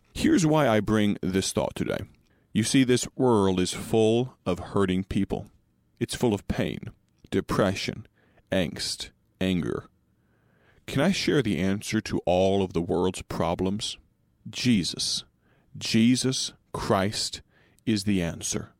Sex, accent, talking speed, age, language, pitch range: male, American, 130 wpm, 40-59, English, 95-125 Hz